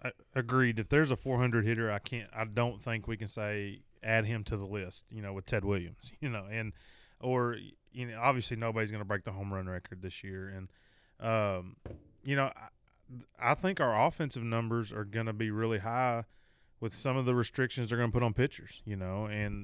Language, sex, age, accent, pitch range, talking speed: English, male, 30-49, American, 105-125 Hz, 220 wpm